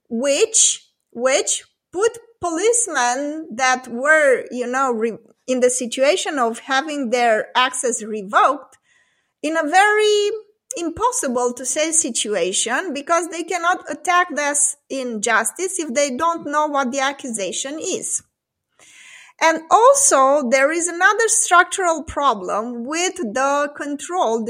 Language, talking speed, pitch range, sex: English, 110 wpm, 245-340 Hz, female